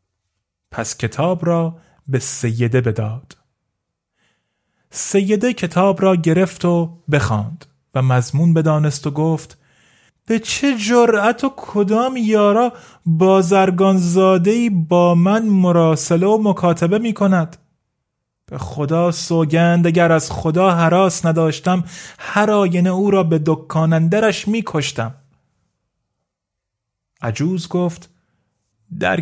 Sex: male